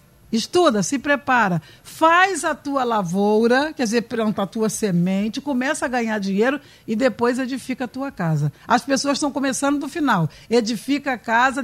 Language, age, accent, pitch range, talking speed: Portuguese, 60-79, Brazilian, 220-310 Hz, 165 wpm